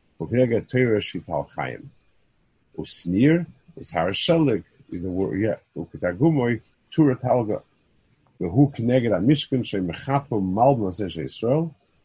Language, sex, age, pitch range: English, male, 50-69, 95-135 Hz